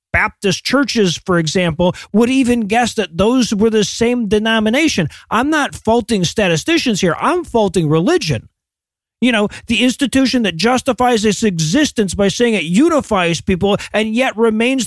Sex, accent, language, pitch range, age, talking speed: male, American, English, 200-255 Hz, 40-59, 150 wpm